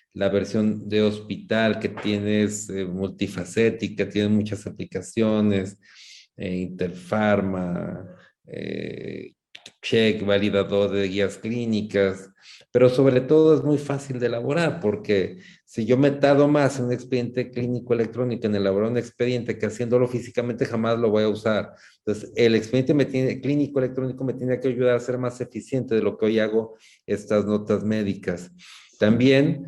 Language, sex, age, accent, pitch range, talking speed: Spanish, male, 40-59, Mexican, 100-120 Hz, 145 wpm